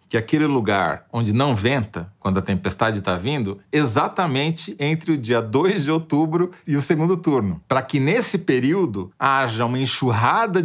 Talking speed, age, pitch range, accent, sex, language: 170 wpm, 40-59, 115-175 Hz, Brazilian, male, Portuguese